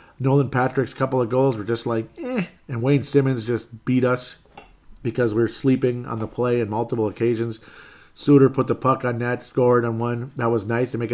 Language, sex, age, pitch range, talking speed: English, male, 40-59, 110-135 Hz, 210 wpm